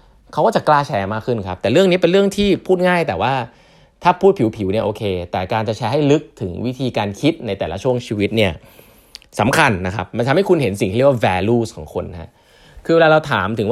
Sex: male